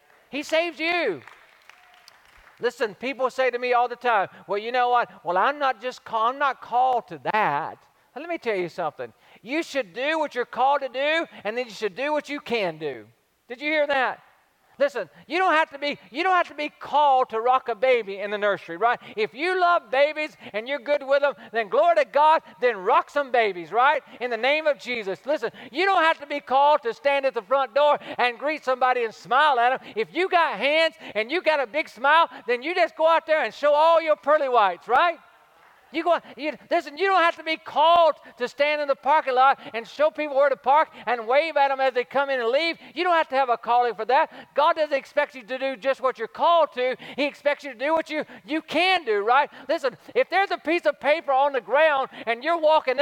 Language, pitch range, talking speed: English, 245-310 Hz, 240 wpm